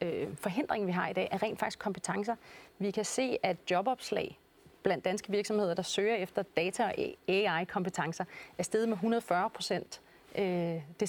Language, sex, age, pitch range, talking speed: Danish, female, 30-49, 180-220 Hz, 155 wpm